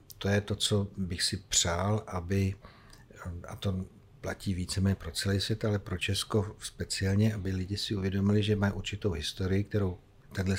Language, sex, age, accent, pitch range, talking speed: Czech, male, 60-79, native, 95-105 Hz, 165 wpm